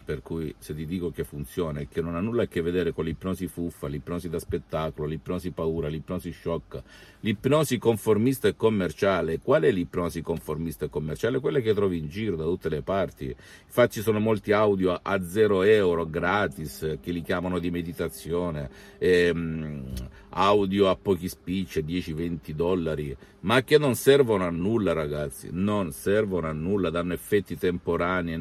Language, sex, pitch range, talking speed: Italian, male, 80-95 Hz, 165 wpm